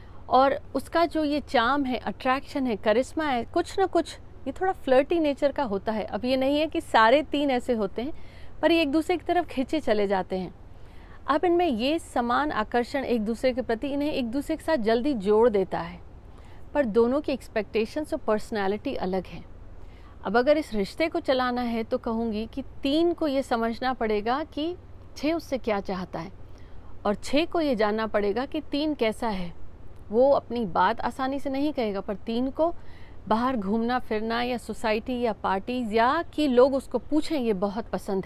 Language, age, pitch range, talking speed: Hindi, 40-59, 210-285 Hz, 190 wpm